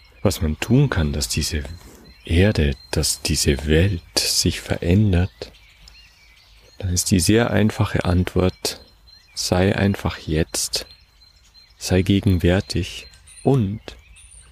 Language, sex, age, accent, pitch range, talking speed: German, male, 40-59, German, 80-100 Hz, 100 wpm